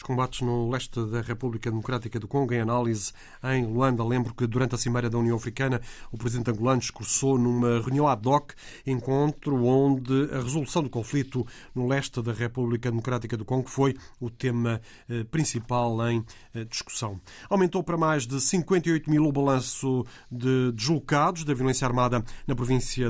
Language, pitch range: Portuguese, 120-135 Hz